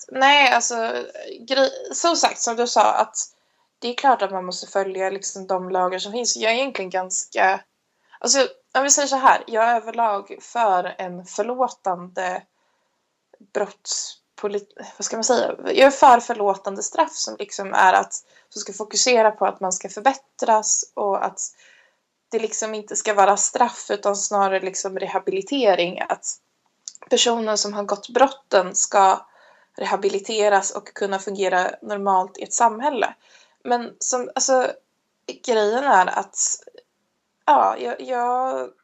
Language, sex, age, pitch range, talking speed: Swedish, female, 20-39, 195-255 Hz, 145 wpm